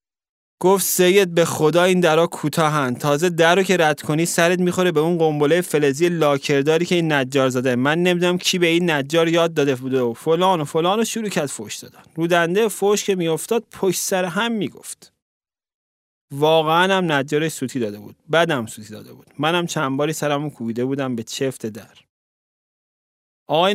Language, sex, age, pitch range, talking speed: Persian, male, 30-49, 140-180 Hz, 175 wpm